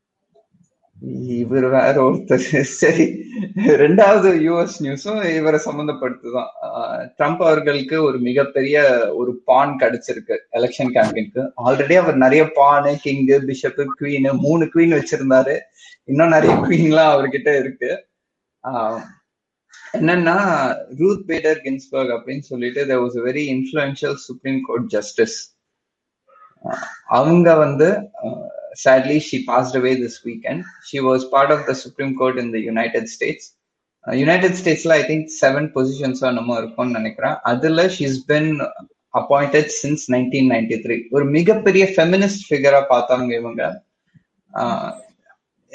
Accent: native